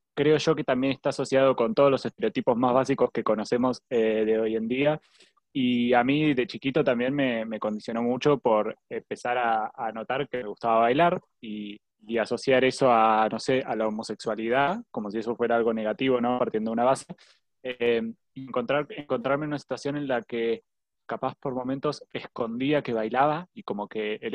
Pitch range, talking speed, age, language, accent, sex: 115-150 Hz, 190 wpm, 20-39, Spanish, Argentinian, male